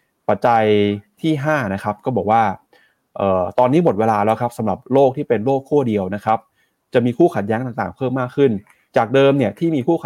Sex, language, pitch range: male, Thai, 105-135 Hz